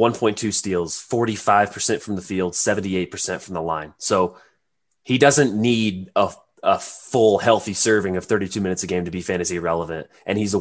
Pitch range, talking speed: 95-115 Hz, 175 wpm